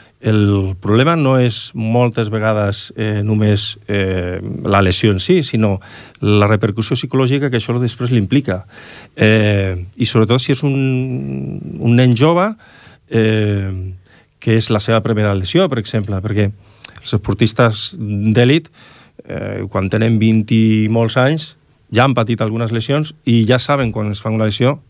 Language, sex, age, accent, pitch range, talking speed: Italian, male, 40-59, Spanish, 105-130 Hz, 160 wpm